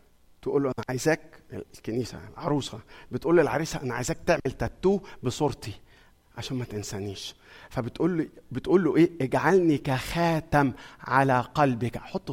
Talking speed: 115 wpm